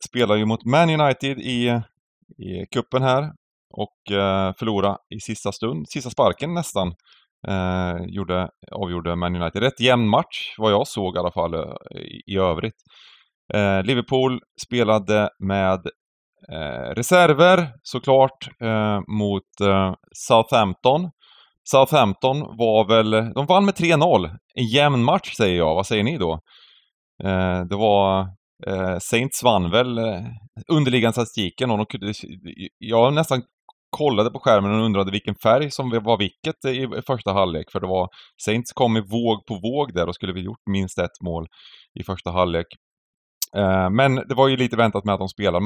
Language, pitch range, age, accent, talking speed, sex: Swedish, 95-130 Hz, 30-49, native, 155 wpm, male